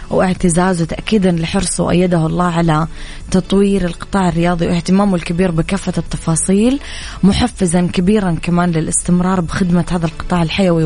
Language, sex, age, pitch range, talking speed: Arabic, female, 20-39, 165-185 Hz, 115 wpm